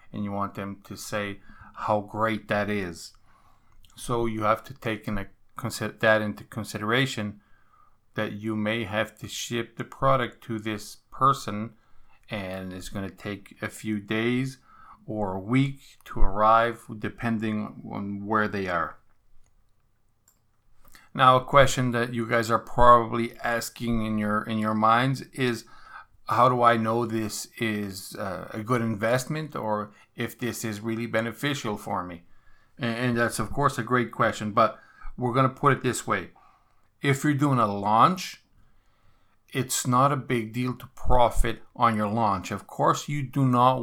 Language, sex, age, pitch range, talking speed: English, male, 40-59, 105-120 Hz, 155 wpm